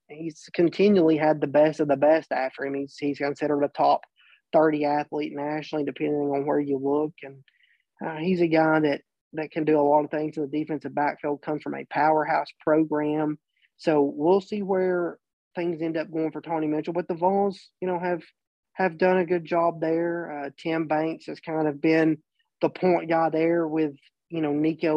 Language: English